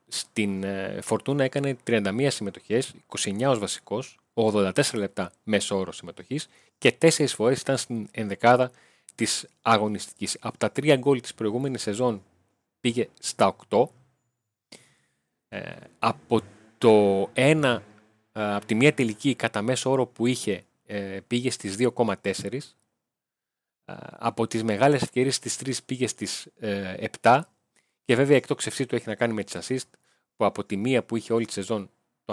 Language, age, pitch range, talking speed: Greek, 30-49, 105-130 Hz, 140 wpm